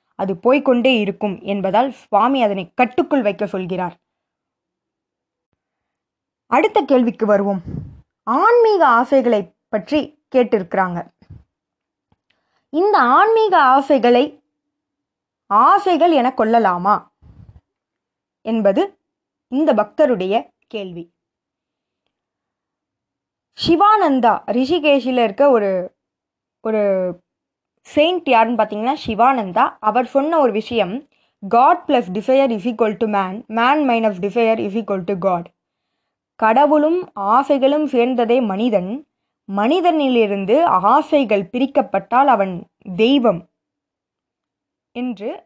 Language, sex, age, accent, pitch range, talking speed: Tamil, female, 20-39, native, 210-285 Hz, 80 wpm